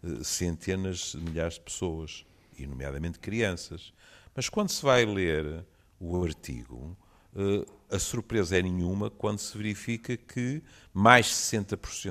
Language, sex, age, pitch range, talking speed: Portuguese, male, 50-69, 90-125 Hz, 125 wpm